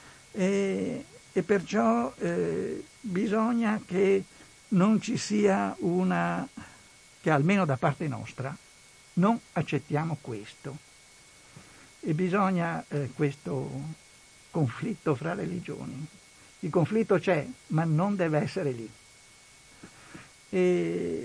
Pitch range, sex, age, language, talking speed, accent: 140-185 Hz, male, 60-79, Italian, 95 wpm, native